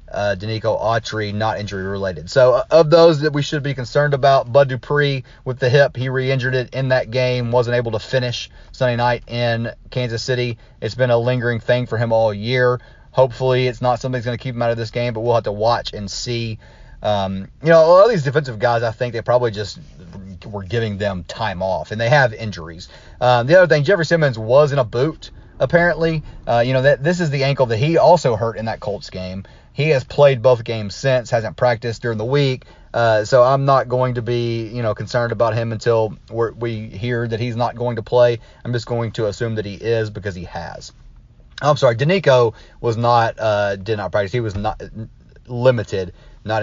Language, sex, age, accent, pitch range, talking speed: English, male, 30-49, American, 110-130 Hz, 220 wpm